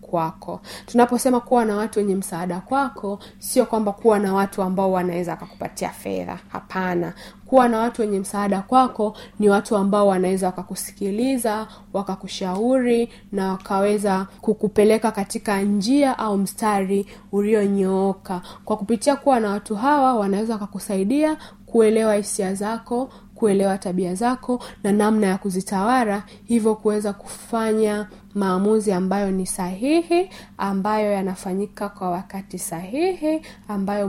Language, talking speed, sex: Swahili, 120 wpm, female